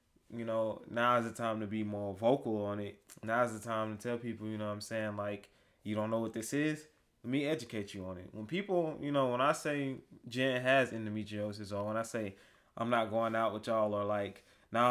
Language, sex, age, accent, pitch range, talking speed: English, male, 20-39, American, 110-140 Hz, 240 wpm